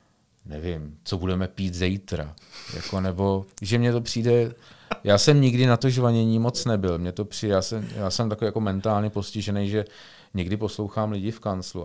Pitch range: 90-110 Hz